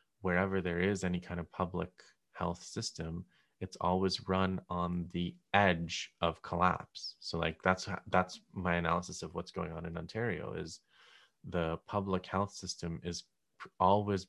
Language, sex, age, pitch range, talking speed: English, male, 20-39, 85-95 Hz, 150 wpm